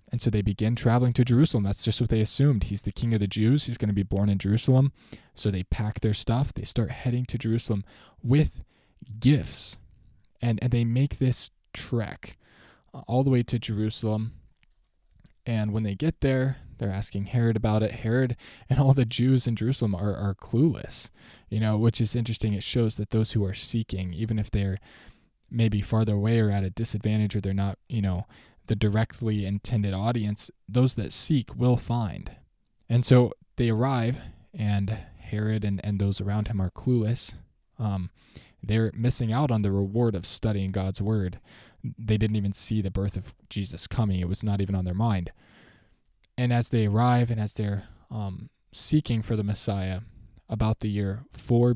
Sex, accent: male, American